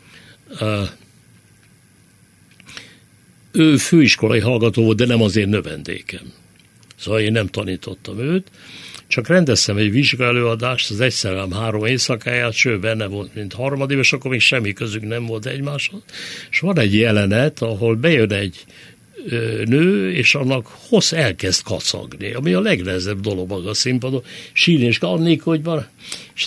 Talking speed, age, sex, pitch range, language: 135 wpm, 60-79, male, 105-140 Hz, Hungarian